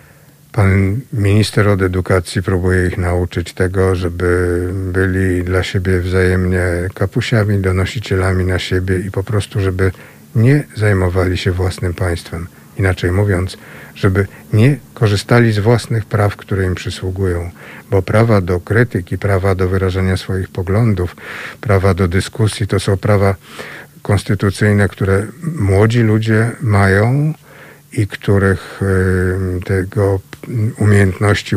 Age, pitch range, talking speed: 60-79, 90-100 Hz, 115 wpm